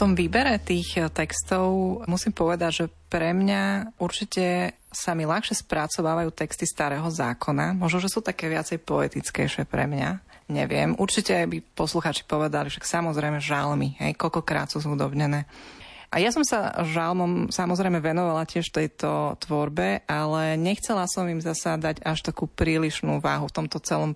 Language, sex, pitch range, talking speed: Slovak, female, 155-185 Hz, 150 wpm